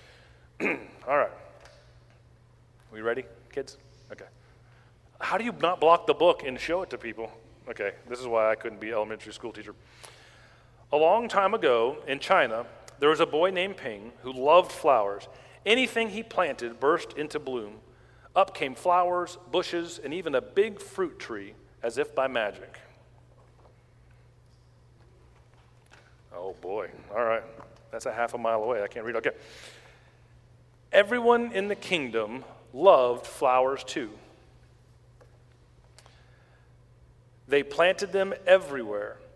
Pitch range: 120-180 Hz